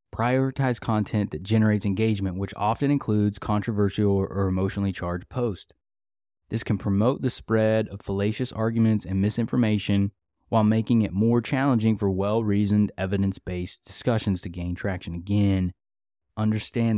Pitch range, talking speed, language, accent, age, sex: 95-120 Hz, 130 wpm, English, American, 20-39, male